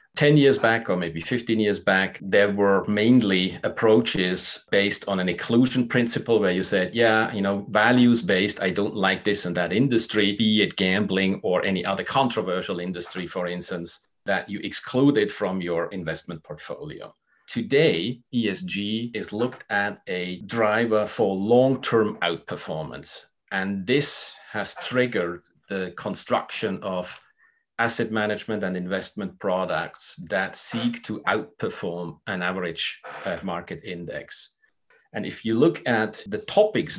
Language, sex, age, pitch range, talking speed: English, male, 40-59, 95-115 Hz, 140 wpm